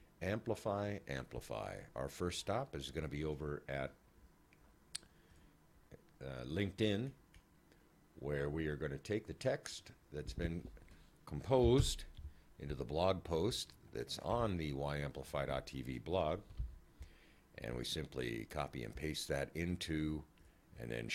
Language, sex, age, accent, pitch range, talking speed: English, male, 50-69, American, 70-90 Hz, 120 wpm